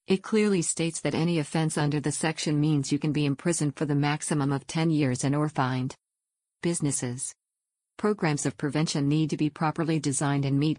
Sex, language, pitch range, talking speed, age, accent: female, English, 145-165 Hz, 190 wpm, 50-69, American